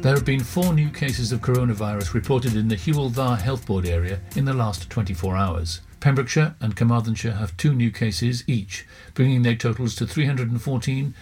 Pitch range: 105-130 Hz